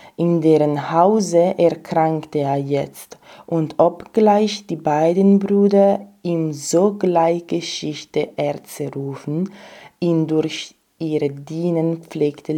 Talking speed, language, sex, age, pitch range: 100 wpm, German, female, 20-39, 145-175 Hz